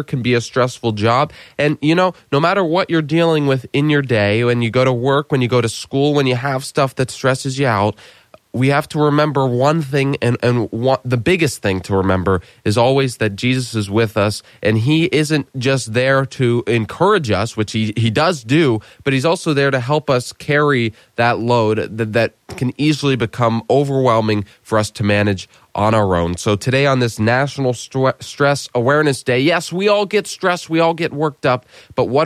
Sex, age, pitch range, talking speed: male, 20-39, 115-145 Hz, 210 wpm